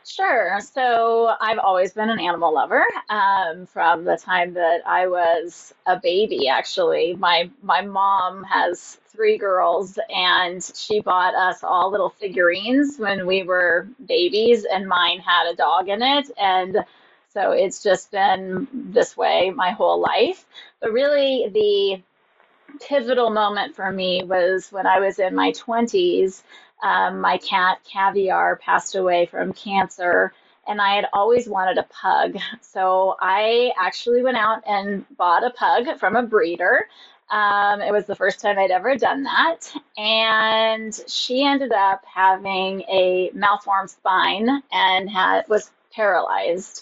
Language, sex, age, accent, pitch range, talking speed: English, female, 30-49, American, 185-245 Hz, 145 wpm